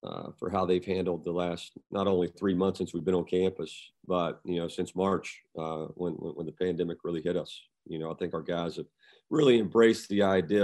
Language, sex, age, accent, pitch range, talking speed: English, male, 40-59, American, 90-105 Hz, 225 wpm